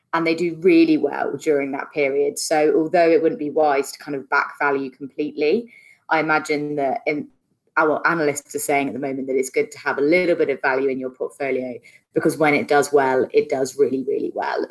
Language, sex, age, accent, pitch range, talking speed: English, female, 20-39, British, 140-165 Hz, 225 wpm